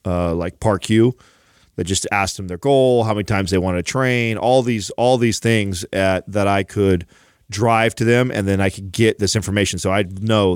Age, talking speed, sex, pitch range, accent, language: 30-49, 215 wpm, male, 95-110 Hz, American, English